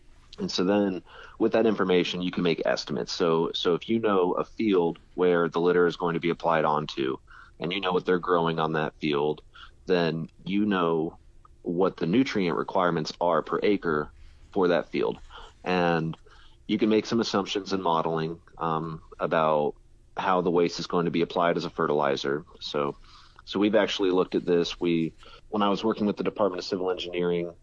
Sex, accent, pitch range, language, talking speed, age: male, American, 80-95 Hz, English, 190 wpm, 30-49